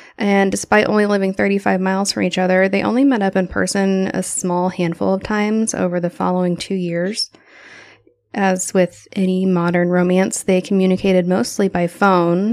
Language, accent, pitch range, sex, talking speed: English, American, 180-205 Hz, female, 170 wpm